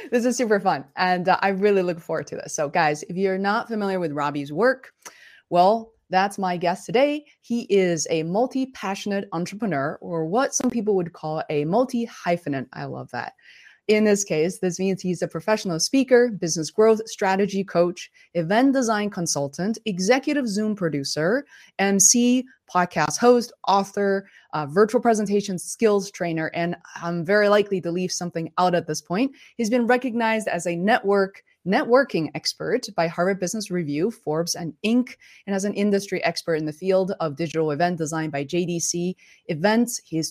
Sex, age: female, 20-39